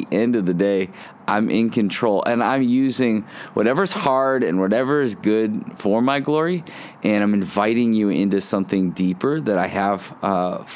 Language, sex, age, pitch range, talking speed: English, male, 20-39, 95-120 Hz, 165 wpm